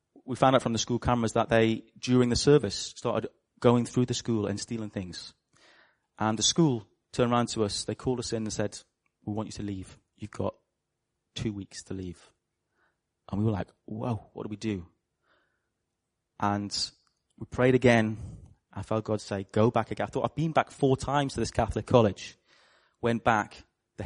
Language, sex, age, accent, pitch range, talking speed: English, male, 30-49, British, 110-140 Hz, 195 wpm